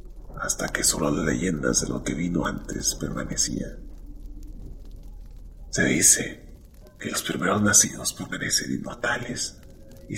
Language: Spanish